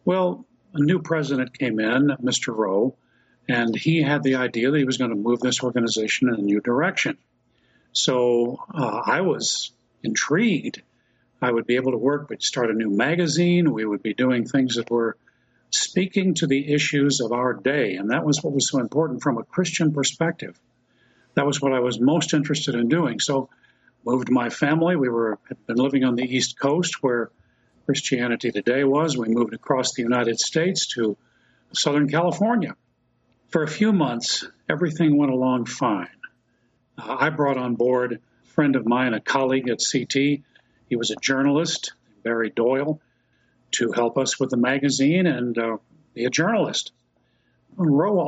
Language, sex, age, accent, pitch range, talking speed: English, male, 50-69, American, 120-150 Hz, 175 wpm